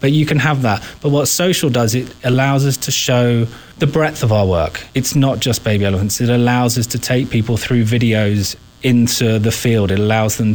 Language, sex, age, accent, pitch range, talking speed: English, male, 30-49, British, 110-130 Hz, 215 wpm